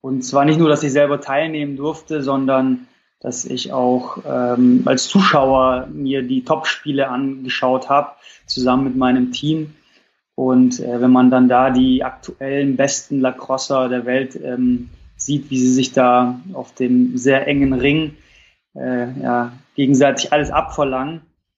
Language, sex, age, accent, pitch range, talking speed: German, male, 20-39, German, 130-150 Hz, 145 wpm